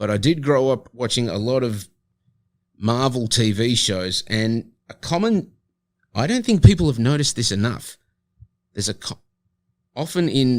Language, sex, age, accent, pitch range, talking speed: English, male, 30-49, Australian, 105-125 Hz, 145 wpm